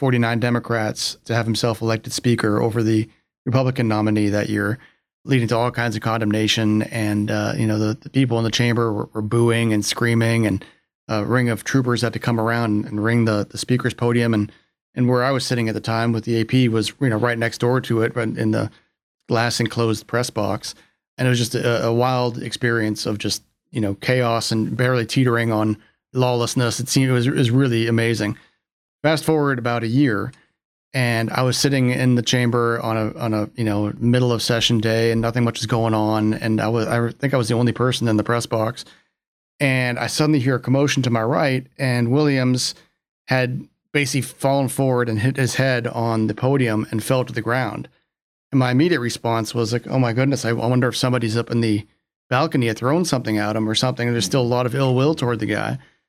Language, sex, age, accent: English, male, 30-49, American